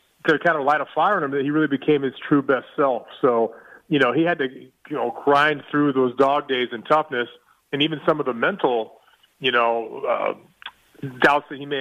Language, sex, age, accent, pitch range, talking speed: English, male, 30-49, American, 130-150 Hz, 225 wpm